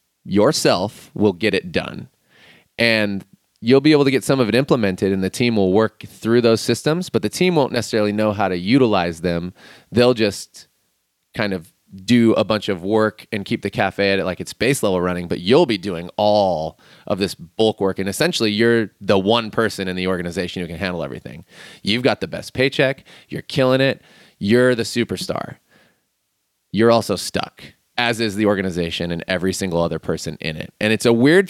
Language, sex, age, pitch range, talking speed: English, male, 30-49, 95-120 Hz, 200 wpm